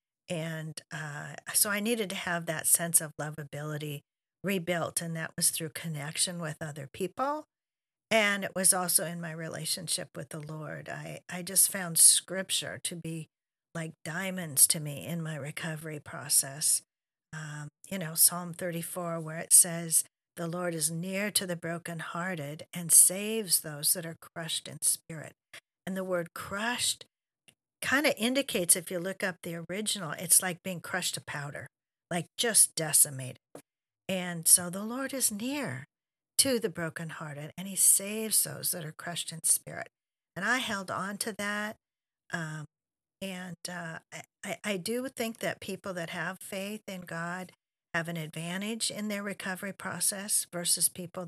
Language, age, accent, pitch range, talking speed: English, 50-69, American, 160-190 Hz, 160 wpm